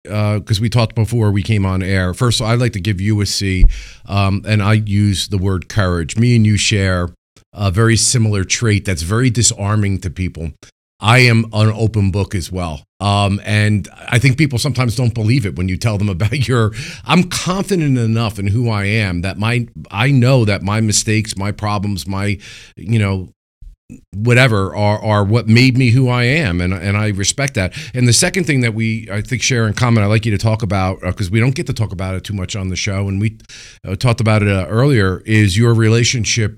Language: English